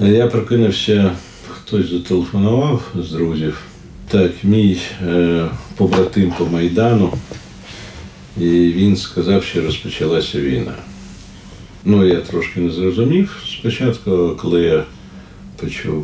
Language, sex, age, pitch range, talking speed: Ukrainian, male, 50-69, 85-105 Hz, 100 wpm